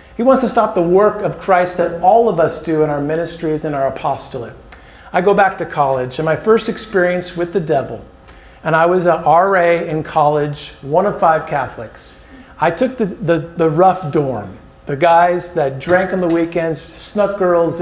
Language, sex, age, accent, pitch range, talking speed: English, male, 50-69, American, 150-190 Hz, 195 wpm